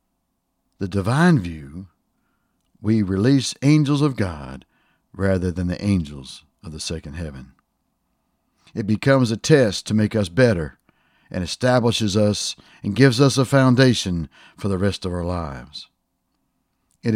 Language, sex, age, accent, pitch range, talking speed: English, male, 60-79, American, 85-115 Hz, 135 wpm